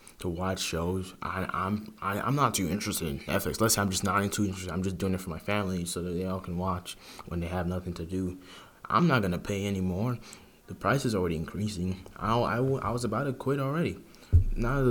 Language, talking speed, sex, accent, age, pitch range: English, 235 wpm, male, American, 20-39, 90-105 Hz